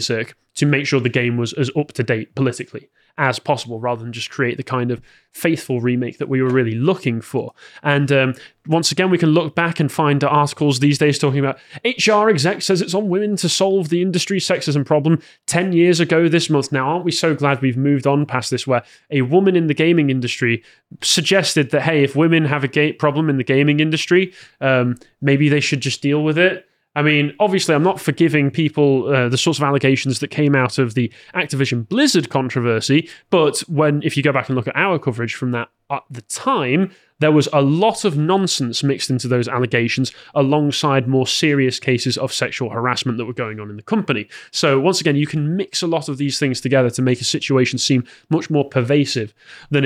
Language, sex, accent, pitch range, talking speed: English, male, British, 130-160 Hz, 210 wpm